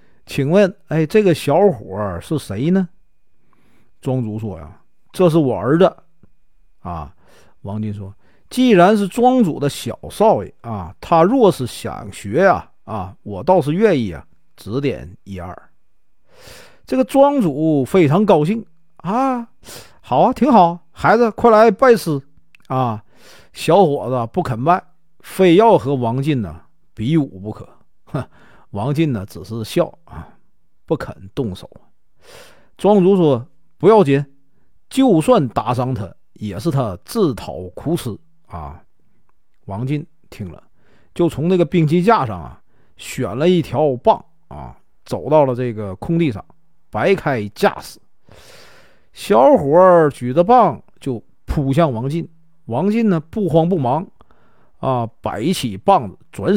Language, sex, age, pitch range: Chinese, male, 50-69, 115-180 Hz